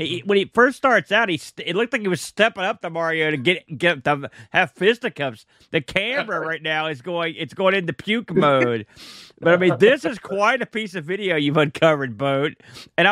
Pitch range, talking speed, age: 155-220 Hz, 220 wpm, 40-59